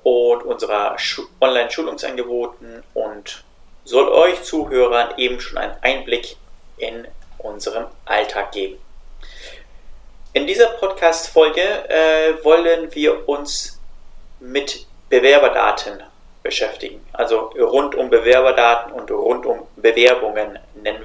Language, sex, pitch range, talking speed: German, male, 120-170 Hz, 95 wpm